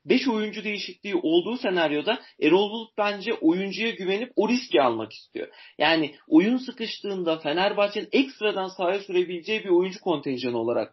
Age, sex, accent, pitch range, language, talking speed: 40-59, male, native, 175-225 Hz, Turkish, 135 wpm